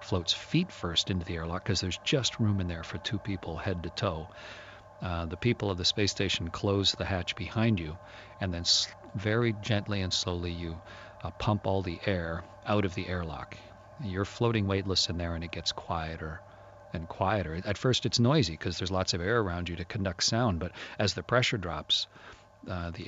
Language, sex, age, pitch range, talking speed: English, male, 40-59, 90-105 Hz, 205 wpm